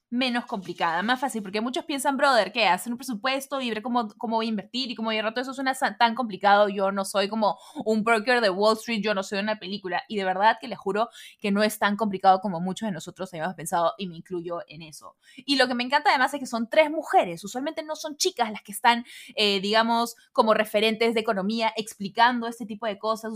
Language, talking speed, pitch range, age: Spanish, 240 wpm, 205-255 Hz, 20-39